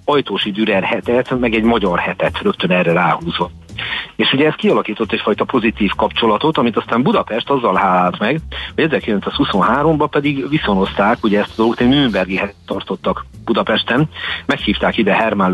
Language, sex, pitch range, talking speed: Hungarian, male, 100-115 Hz, 145 wpm